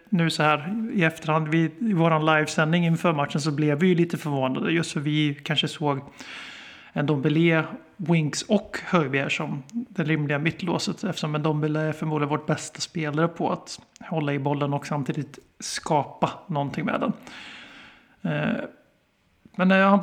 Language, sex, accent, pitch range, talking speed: Swedish, male, native, 150-180 Hz, 150 wpm